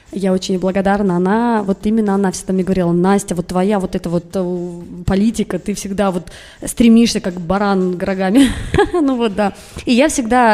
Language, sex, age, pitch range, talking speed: Russian, female, 20-39, 190-225 Hz, 170 wpm